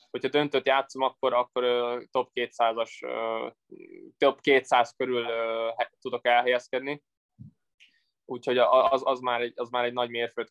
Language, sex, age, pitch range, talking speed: Hungarian, male, 20-39, 115-125 Hz, 125 wpm